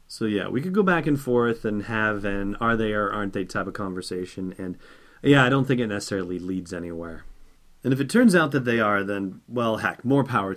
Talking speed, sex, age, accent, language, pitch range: 210 wpm, male, 30-49, American, English, 100-130 Hz